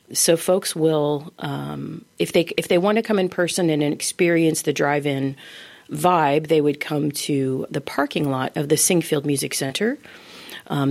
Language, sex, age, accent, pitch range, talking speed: English, female, 40-59, American, 135-165 Hz, 170 wpm